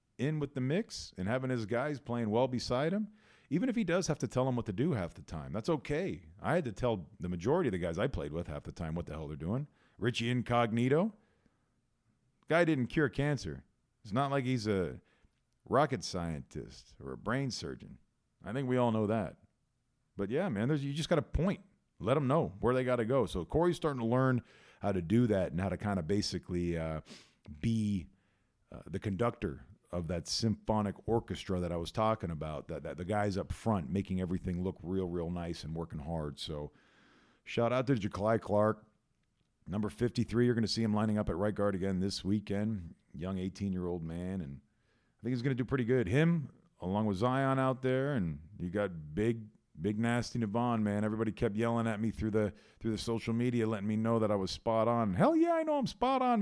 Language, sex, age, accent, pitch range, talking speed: English, male, 40-59, American, 95-130 Hz, 215 wpm